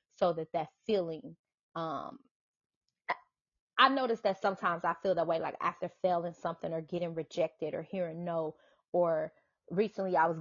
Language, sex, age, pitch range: English, female, 20-39, 165-200 Hz